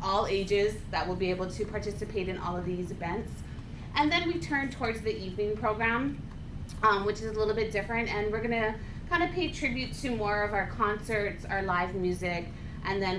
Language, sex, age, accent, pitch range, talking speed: English, female, 30-49, American, 185-240 Hz, 205 wpm